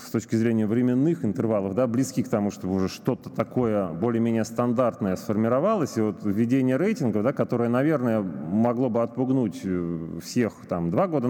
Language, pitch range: Russian, 105-130 Hz